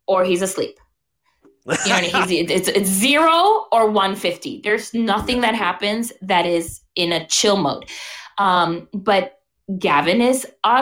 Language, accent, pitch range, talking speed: English, American, 200-255 Hz, 130 wpm